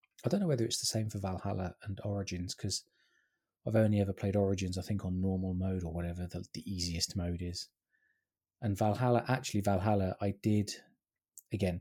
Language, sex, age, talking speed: English, male, 20-39, 185 wpm